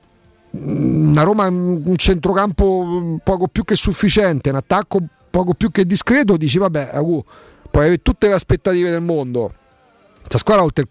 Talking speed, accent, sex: 150 wpm, native, male